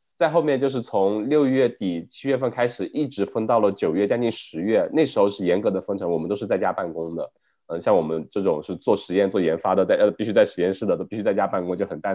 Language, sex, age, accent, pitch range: Chinese, male, 20-39, native, 100-150 Hz